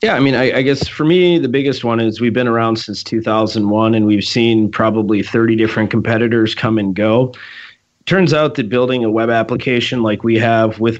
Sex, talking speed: male, 205 wpm